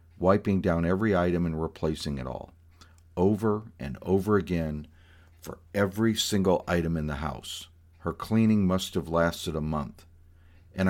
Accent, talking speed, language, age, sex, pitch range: American, 150 wpm, English, 50-69, male, 85-100 Hz